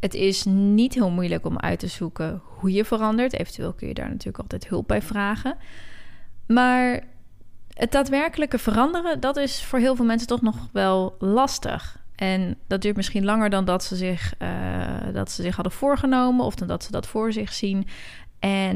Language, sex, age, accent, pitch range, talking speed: Dutch, female, 20-39, Dutch, 175-230 Hz, 190 wpm